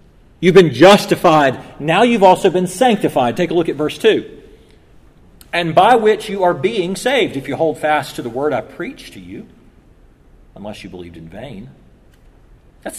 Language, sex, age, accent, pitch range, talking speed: English, male, 40-59, American, 165-215 Hz, 175 wpm